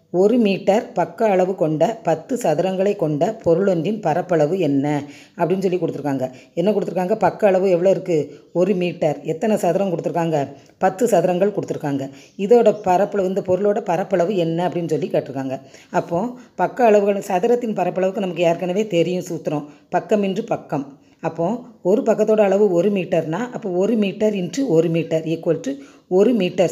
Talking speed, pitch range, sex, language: 135 wpm, 160-205 Hz, female, Tamil